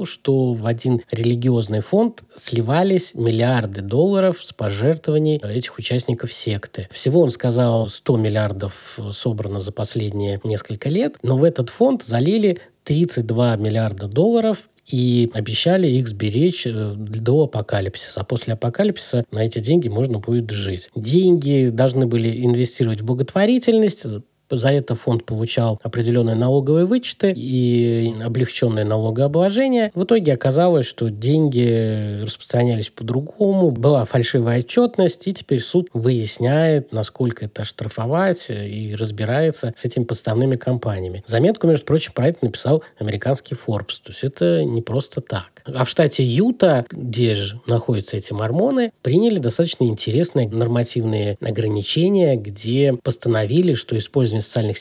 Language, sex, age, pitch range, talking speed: Russian, male, 20-39, 115-150 Hz, 130 wpm